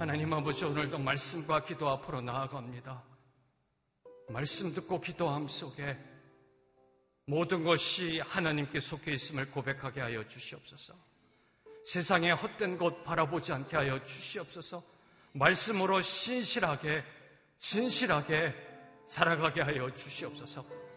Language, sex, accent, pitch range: Korean, male, native, 120-170 Hz